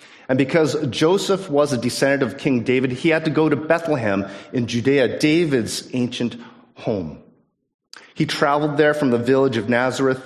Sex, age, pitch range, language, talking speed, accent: male, 40-59, 120-160 Hz, English, 165 wpm, American